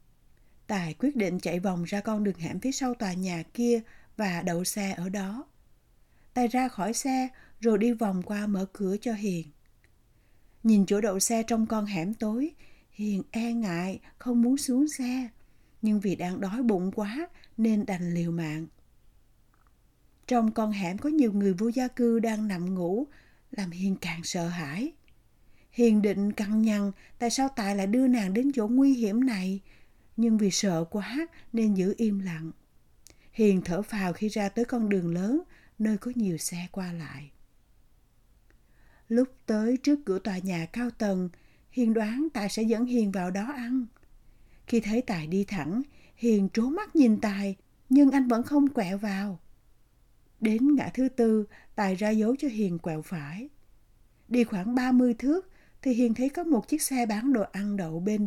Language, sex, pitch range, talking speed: Vietnamese, female, 190-240 Hz, 175 wpm